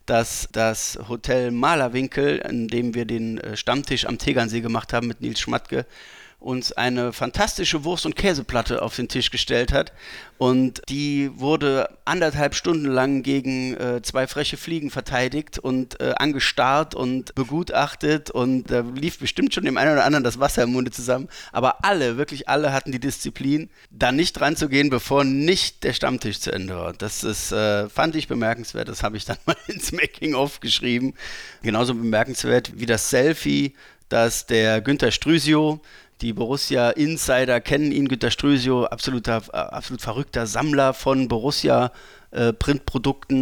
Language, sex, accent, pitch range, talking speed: German, male, German, 120-140 Hz, 155 wpm